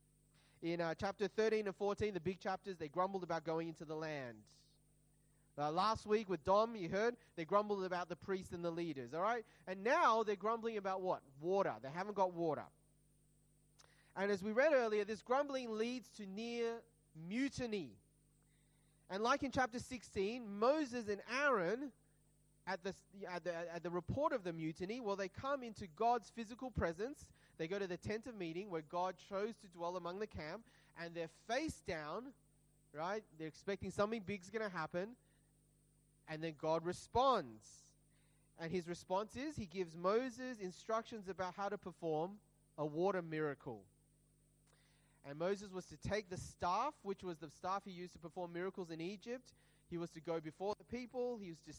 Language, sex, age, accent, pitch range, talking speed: English, male, 30-49, Australian, 160-215 Hz, 175 wpm